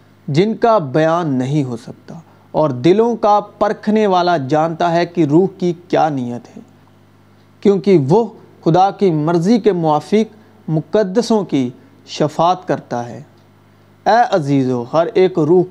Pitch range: 140-190 Hz